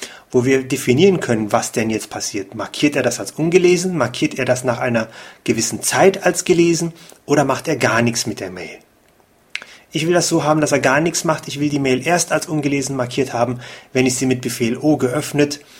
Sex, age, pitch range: male, 30-49, 125-155 Hz